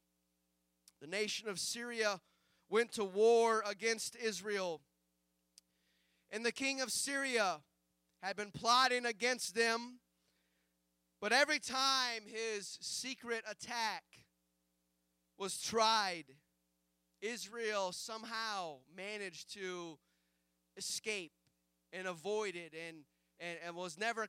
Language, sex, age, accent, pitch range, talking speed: English, male, 30-49, American, 170-245 Hz, 95 wpm